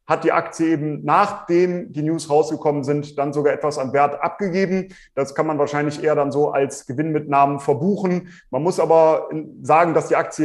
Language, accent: German, German